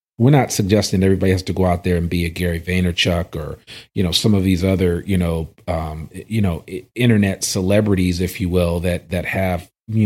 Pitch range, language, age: 90-115 Hz, English, 40-59